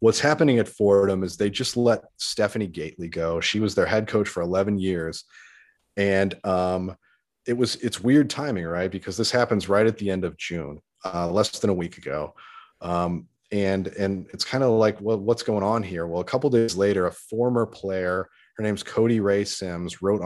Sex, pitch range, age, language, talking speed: male, 85-105 Hz, 30-49, English, 205 wpm